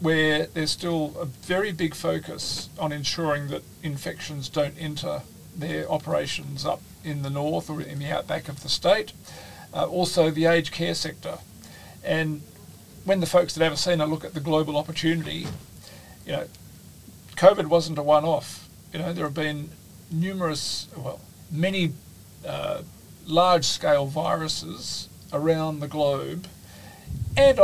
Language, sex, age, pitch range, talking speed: English, male, 40-59, 145-165 Hz, 145 wpm